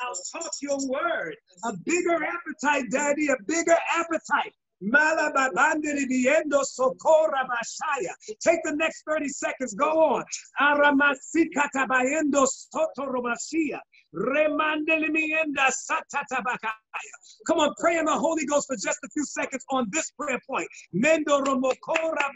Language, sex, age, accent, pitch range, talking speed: English, male, 50-69, American, 275-330 Hz, 130 wpm